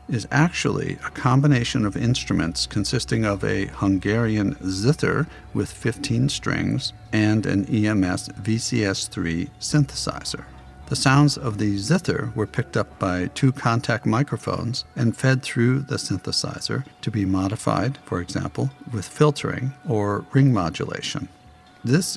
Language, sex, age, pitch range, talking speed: English, male, 50-69, 100-140 Hz, 125 wpm